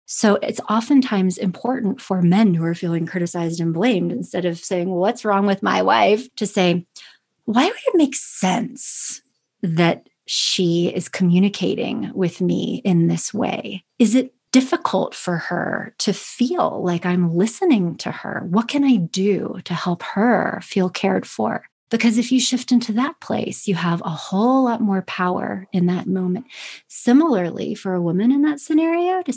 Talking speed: 170 wpm